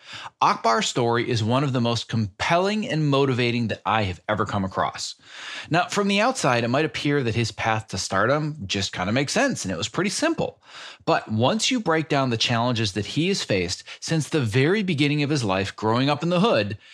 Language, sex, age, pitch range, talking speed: English, male, 30-49, 110-155 Hz, 215 wpm